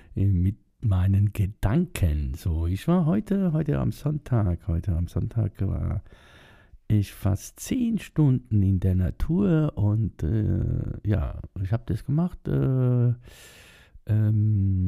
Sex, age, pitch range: male, 50-69, 90-115 Hz